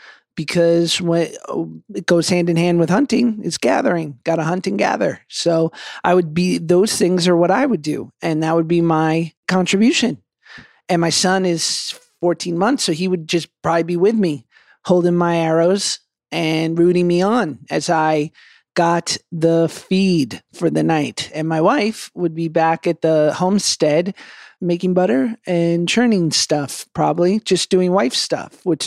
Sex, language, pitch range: male, English, 155-180 Hz